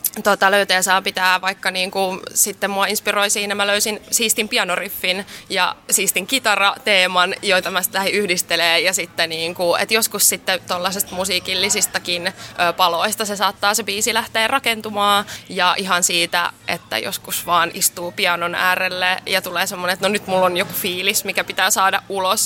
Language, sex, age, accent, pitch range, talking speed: Finnish, female, 20-39, native, 185-215 Hz, 155 wpm